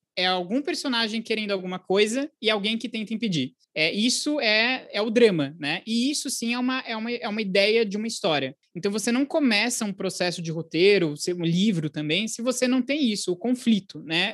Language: Portuguese